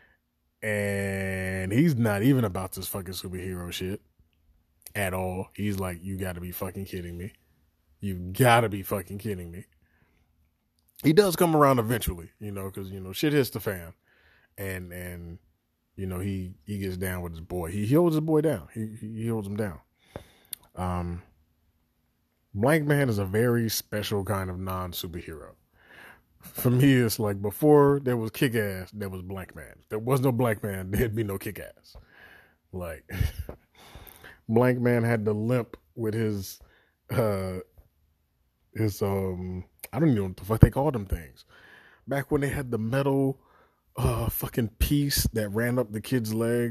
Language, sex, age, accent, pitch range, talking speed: English, male, 20-39, American, 90-115 Hz, 170 wpm